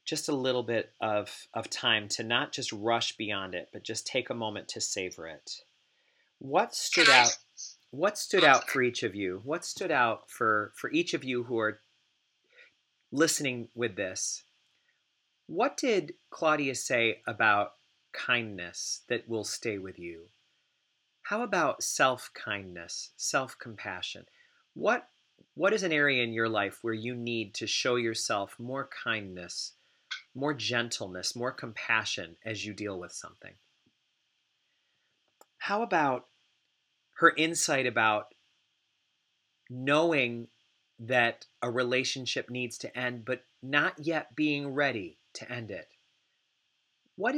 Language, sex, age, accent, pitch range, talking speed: English, male, 40-59, American, 110-145 Hz, 135 wpm